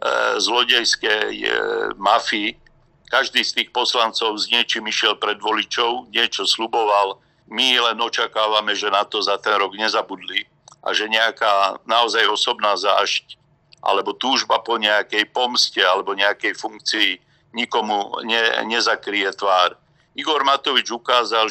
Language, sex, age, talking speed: Slovak, male, 60-79, 125 wpm